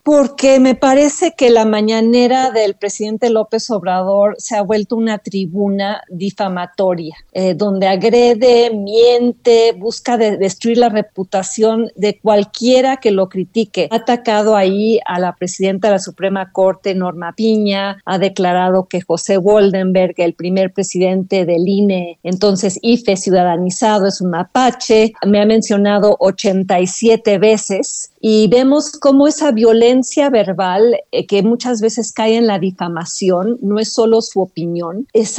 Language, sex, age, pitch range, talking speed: Spanish, female, 40-59, 195-235 Hz, 140 wpm